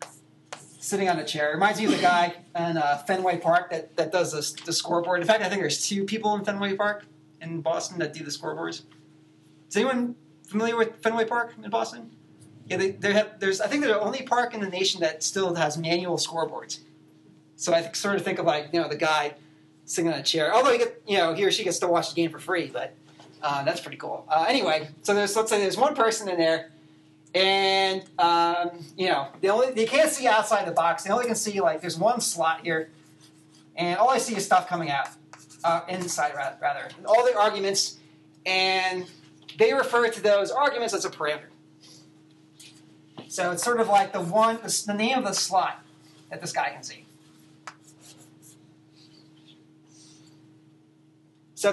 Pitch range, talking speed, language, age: 155-210 Hz, 200 wpm, English, 30-49